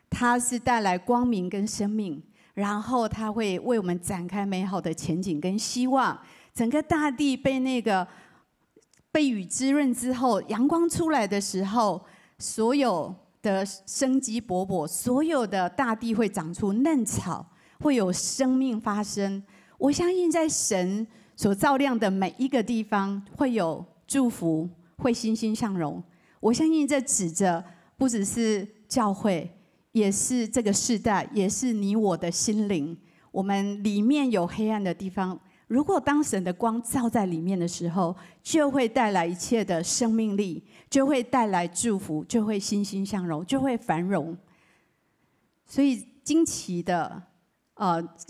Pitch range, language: 180-245 Hz, Chinese